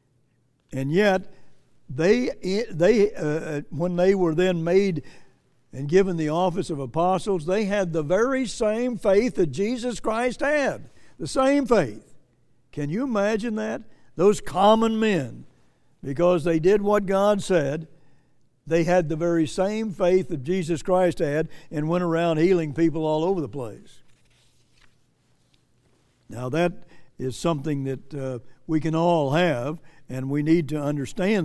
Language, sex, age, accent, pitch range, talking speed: English, male, 60-79, American, 145-185 Hz, 145 wpm